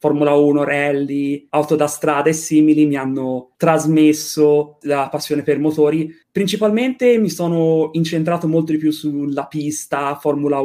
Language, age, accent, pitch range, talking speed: Italian, 30-49, native, 150-175 Hz, 145 wpm